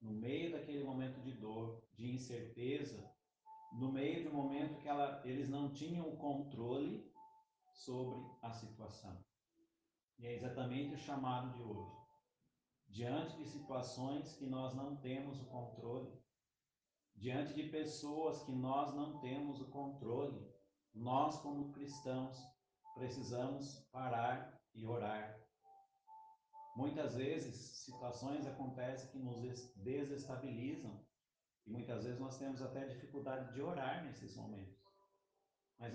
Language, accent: Portuguese, Brazilian